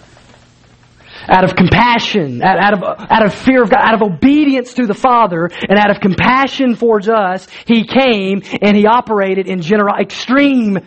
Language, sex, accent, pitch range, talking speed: English, male, American, 160-220 Hz, 155 wpm